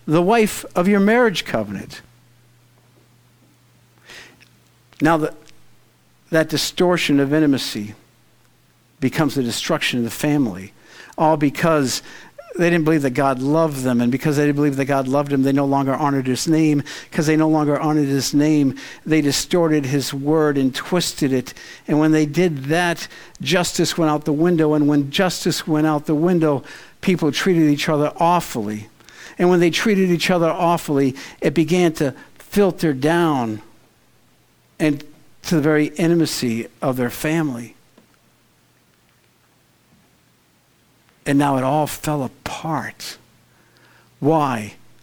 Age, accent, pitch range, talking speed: 50-69, American, 135-170 Hz, 140 wpm